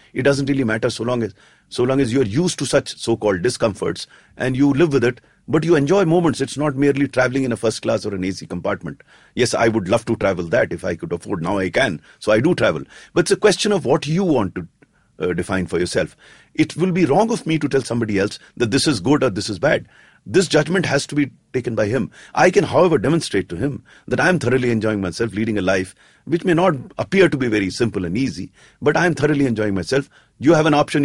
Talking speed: 250 wpm